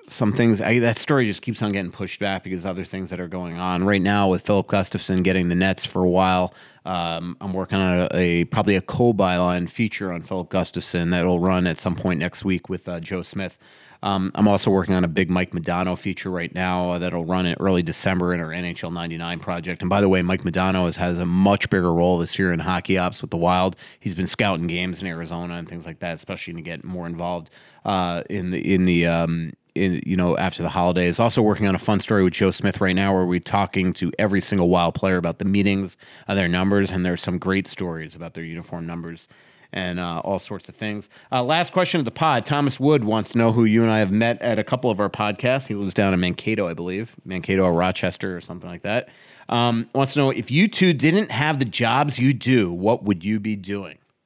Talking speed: 245 wpm